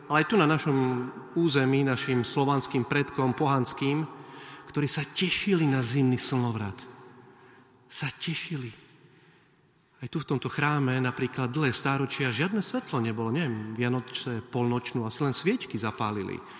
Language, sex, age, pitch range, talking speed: Slovak, male, 40-59, 115-145 Hz, 130 wpm